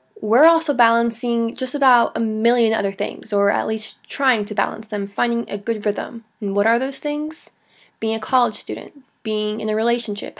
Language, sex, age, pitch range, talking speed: English, female, 20-39, 210-245 Hz, 190 wpm